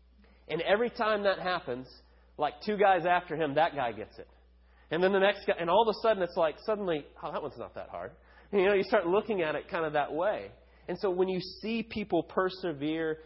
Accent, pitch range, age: American, 135-175 Hz, 30-49